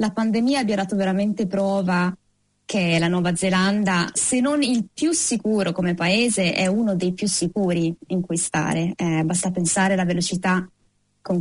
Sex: female